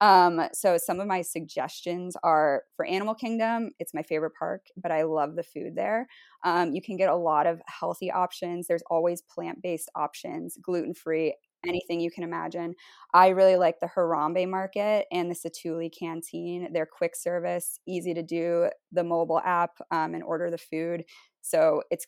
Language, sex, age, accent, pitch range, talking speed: English, female, 20-39, American, 170-200 Hz, 175 wpm